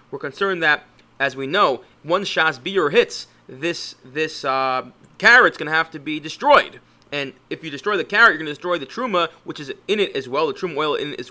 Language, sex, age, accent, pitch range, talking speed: English, male, 30-49, American, 145-200 Hz, 230 wpm